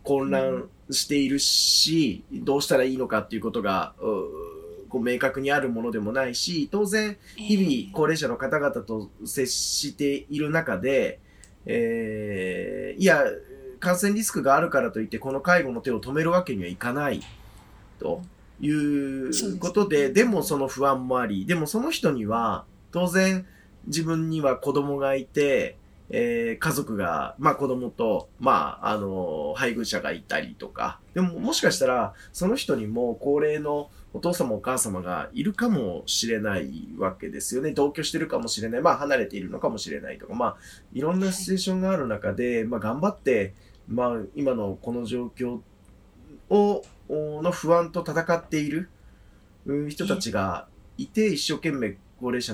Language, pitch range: Japanese, 115-175 Hz